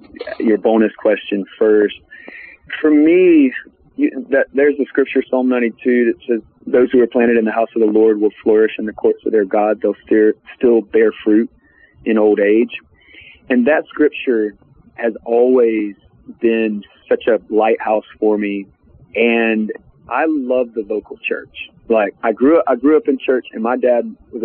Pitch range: 110-125 Hz